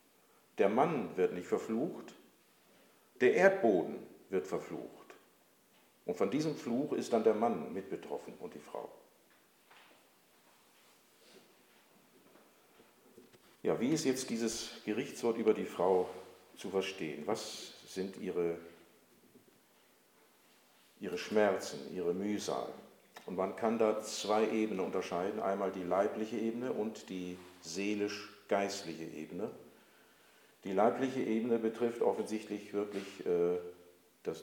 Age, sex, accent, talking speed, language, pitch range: 50-69, male, German, 110 wpm, German, 90-120 Hz